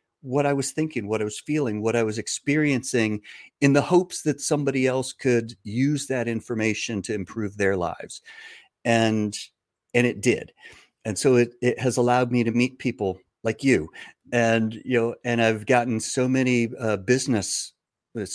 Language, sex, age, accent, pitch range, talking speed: English, male, 50-69, American, 105-130 Hz, 170 wpm